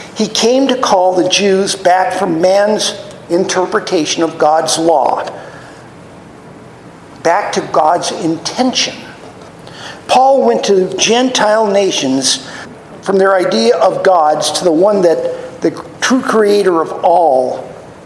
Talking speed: 120 wpm